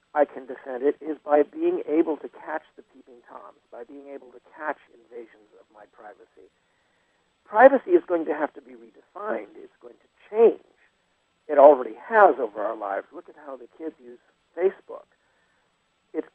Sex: male